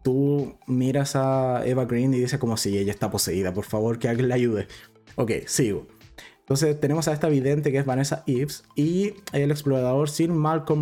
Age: 20-39